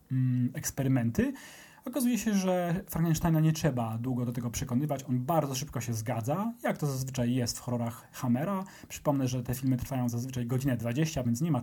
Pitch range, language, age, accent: 125-155 Hz, English, 30-49, Polish